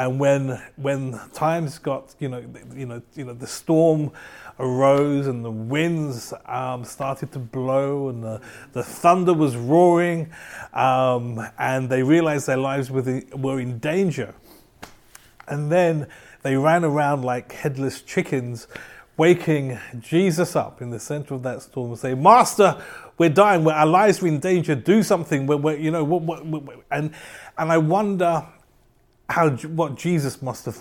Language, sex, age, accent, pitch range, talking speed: English, male, 30-49, British, 125-155 Hz, 155 wpm